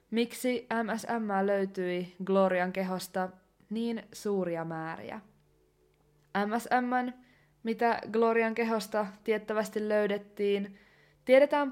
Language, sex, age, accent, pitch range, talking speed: Finnish, female, 20-39, native, 195-235 Hz, 75 wpm